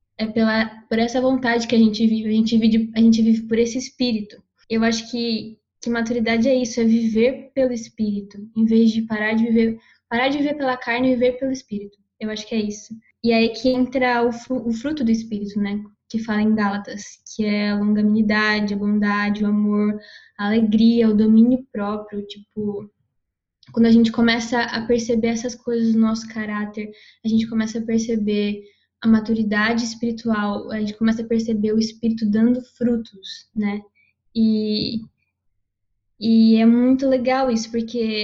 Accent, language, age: Brazilian, Portuguese, 10-29